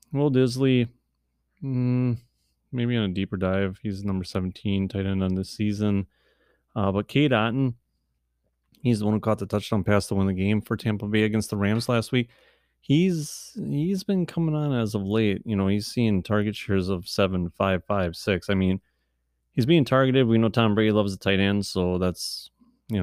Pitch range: 95-110 Hz